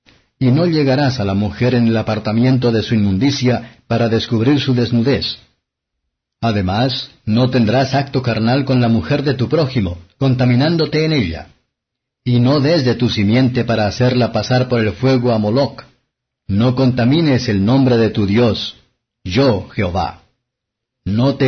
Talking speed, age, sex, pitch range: 155 wpm, 50-69, male, 110-130 Hz